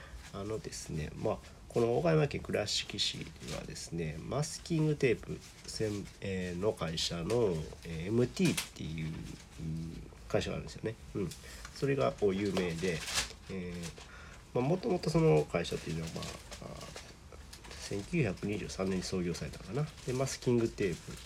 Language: Japanese